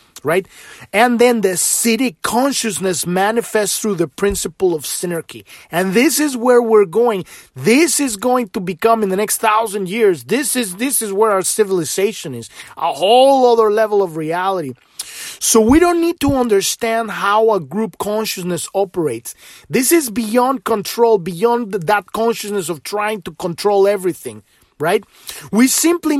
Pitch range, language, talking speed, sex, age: 190-245 Hz, English, 155 wpm, male, 30-49